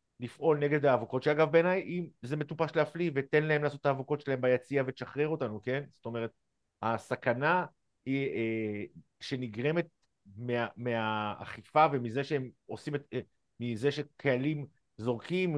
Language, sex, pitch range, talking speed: Hebrew, male, 120-150 Hz, 135 wpm